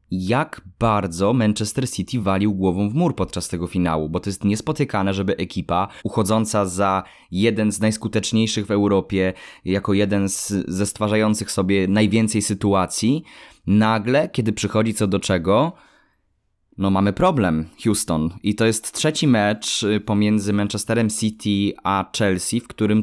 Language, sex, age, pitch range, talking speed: Polish, male, 20-39, 95-120 Hz, 140 wpm